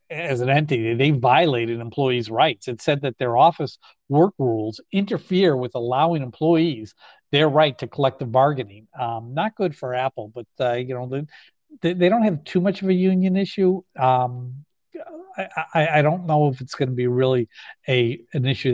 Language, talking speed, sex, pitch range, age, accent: English, 185 wpm, male, 120-150 Hz, 50-69, American